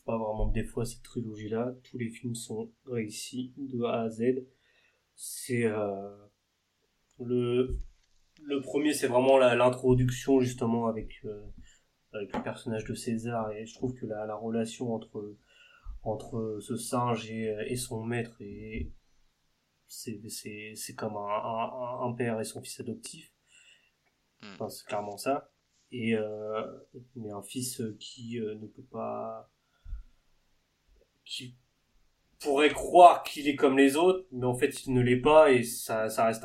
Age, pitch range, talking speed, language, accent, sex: 20-39, 105-130 Hz, 155 wpm, French, French, male